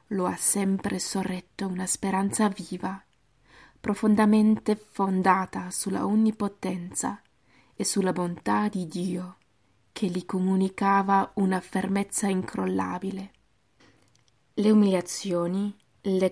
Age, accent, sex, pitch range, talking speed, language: 20-39, native, female, 180-200 Hz, 90 wpm, Italian